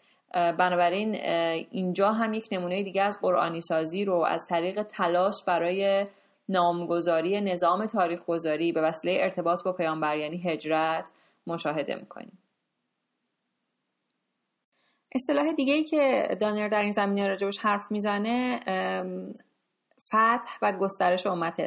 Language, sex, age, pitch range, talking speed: Persian, female, 30-49, 175-215 Hz, 110 wpm